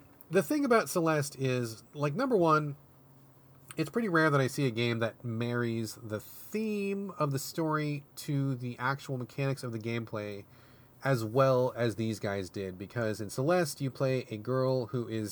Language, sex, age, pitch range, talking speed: English, male, 30-49, 115-150 Hz, 175 wpm